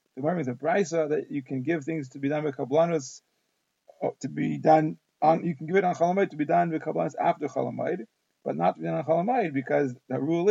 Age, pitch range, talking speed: 30-49, 140-170 Hz, 235 wpm